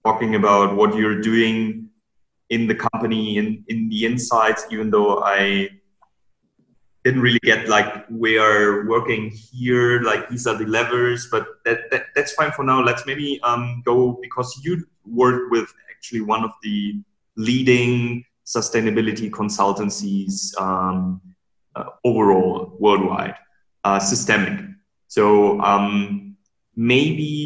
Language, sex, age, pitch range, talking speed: German, male, 20-39, 105-125 Hz, 130 wpm